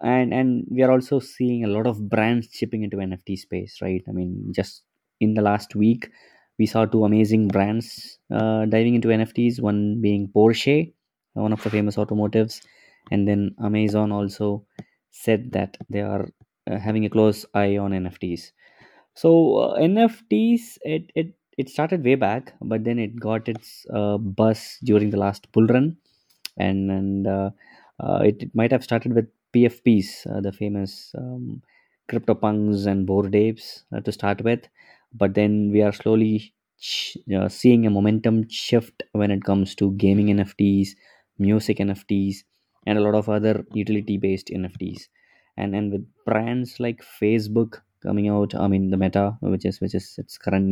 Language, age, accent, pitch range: English, 20-39, Indian, 100-115 Hz